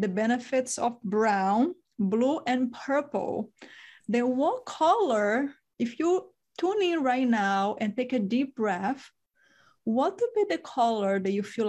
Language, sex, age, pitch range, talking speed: English, female, 30-49, 205-255 Hz, 150 wpm